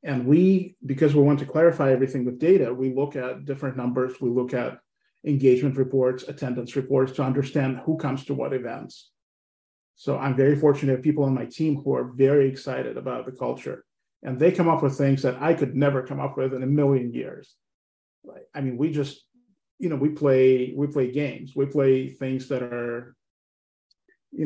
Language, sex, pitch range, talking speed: English, male, 125-145 Hz, 200 wpm